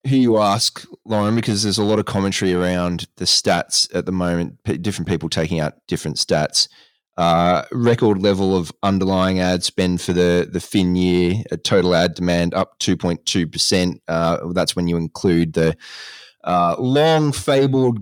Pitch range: 90-110 Hz